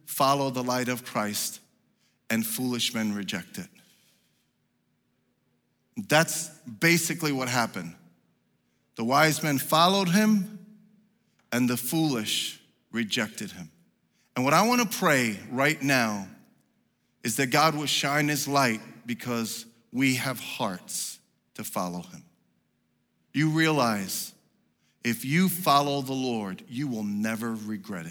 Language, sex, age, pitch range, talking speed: English, male, 40-59, 105-150 Hz, 120 wpm